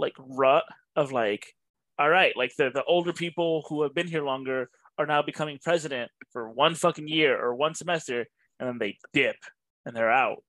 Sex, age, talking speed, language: male, 20-39, 195 wpm, English